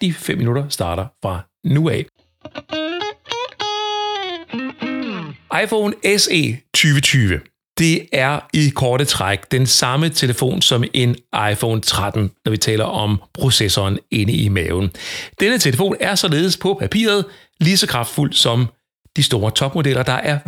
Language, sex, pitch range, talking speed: Danish, male, 110-150 Hz, 130 wpm